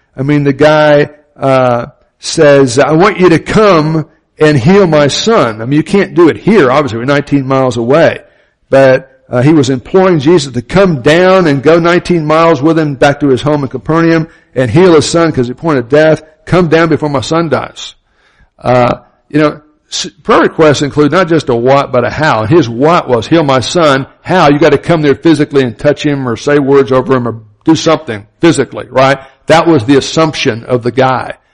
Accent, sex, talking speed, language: American, male, 210 wpm, English